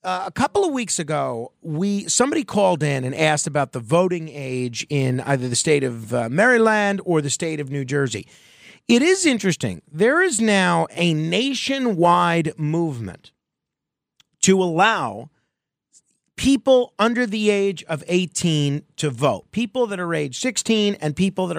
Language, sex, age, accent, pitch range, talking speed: English, male, 40-59, American, 145-195 Hz, 155 wpm